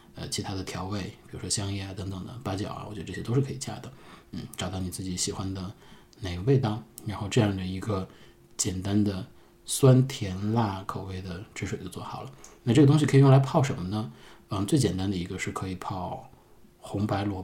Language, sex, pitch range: Chinese, male, 95-125 Hz